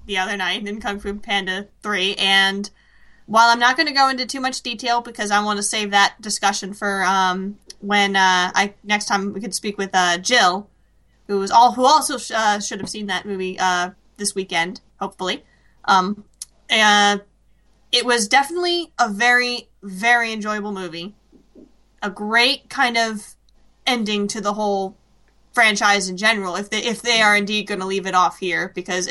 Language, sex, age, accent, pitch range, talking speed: English, female, 20-39, American, 190-225 Hz, 185 wpm